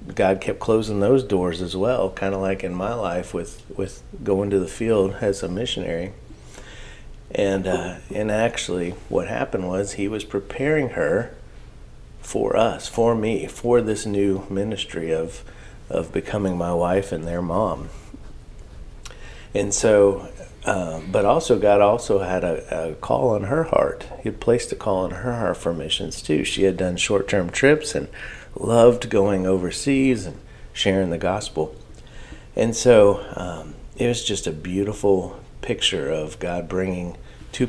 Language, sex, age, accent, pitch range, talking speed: English, male, 40-59, American, 90-110 Hz, 160 wpm